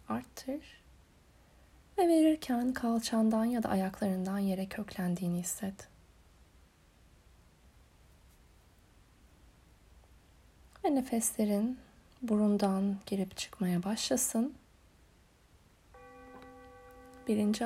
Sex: female